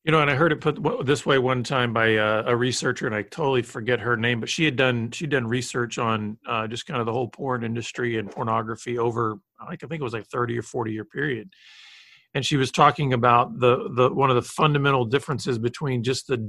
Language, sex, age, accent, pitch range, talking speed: English, male, 40-59, American, 120-145 Hz, 240 wpm